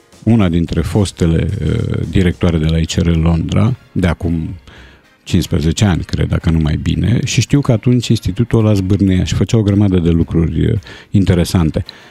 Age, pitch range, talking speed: 50-69, 85-115 Hz, 160 wpm